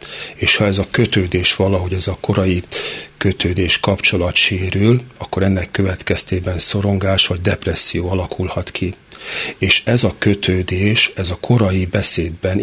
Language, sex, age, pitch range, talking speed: Hungarian, male, 40-59, 90-105 Hz, 135 wpm